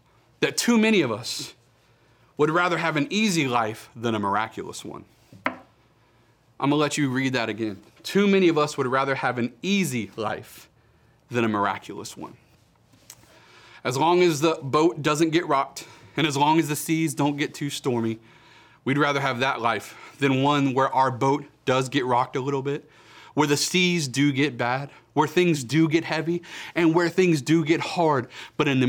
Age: 30-49